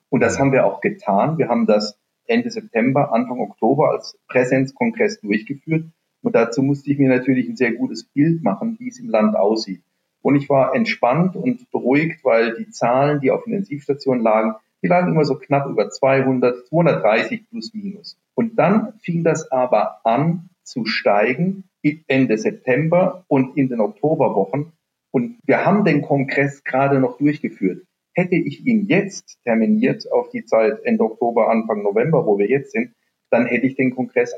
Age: 40-59